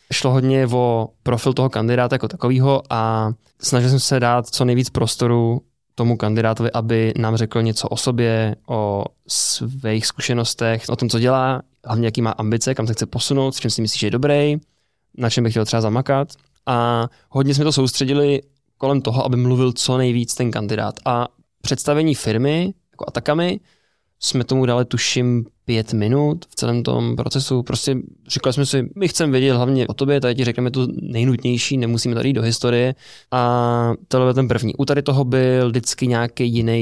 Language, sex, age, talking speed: Czech, male, 20-39, 185 wpm